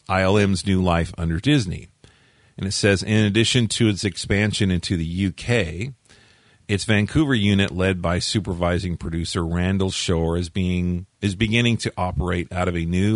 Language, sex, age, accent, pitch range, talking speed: English, male, 40-59, American, 85-105 Hz, 160 wpm